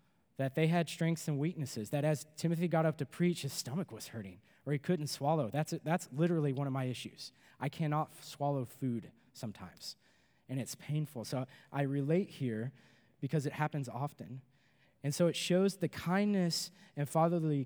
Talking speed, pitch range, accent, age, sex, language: 180 wpm, 125-155 Hz, American, 20-39, male, English